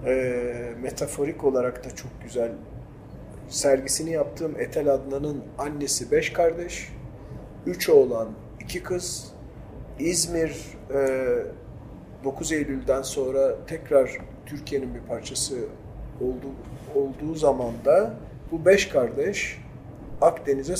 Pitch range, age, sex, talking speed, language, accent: 130-180 Hz, 40-59, male, 90 wpm, Turkish, native